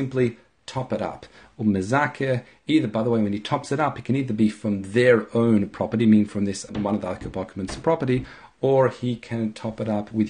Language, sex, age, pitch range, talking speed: English, male, 40-59, 105-125 Hz, 220 wpm